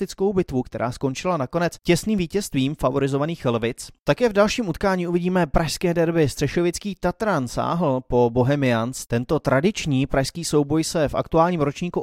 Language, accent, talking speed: Czech, native, 140 wpm